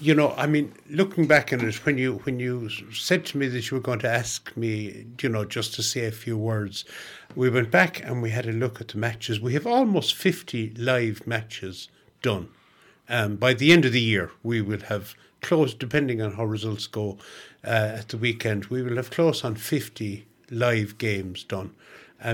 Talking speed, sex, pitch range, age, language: 210 wpm, male, 105-125 Hz, 60-79, English